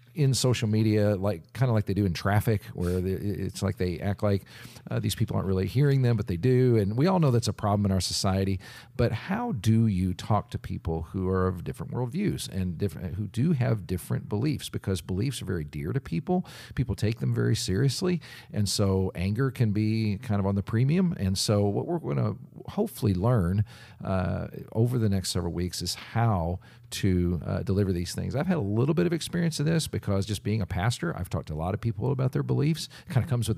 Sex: male